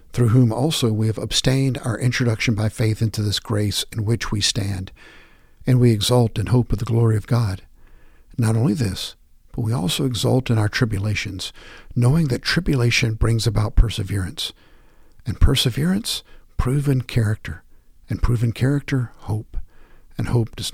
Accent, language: American, English